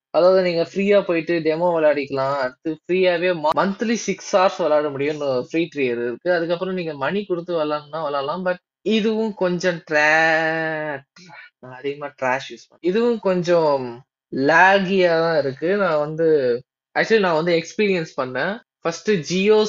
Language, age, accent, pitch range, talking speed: Tamil, 20-39, native, 150-195 Hz, 125 wpm